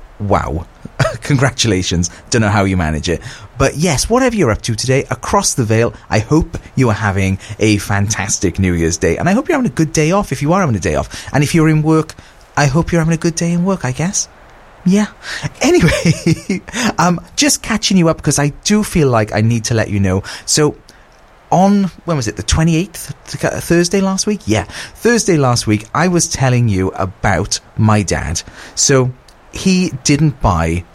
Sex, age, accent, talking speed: male, 30-49, British, 200 wpm